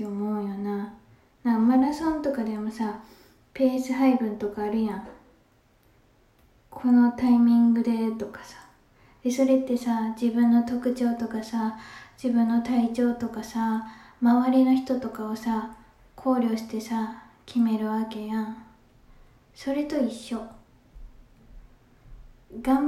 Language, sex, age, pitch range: Japanese, female, 20-39, 220-250 Hz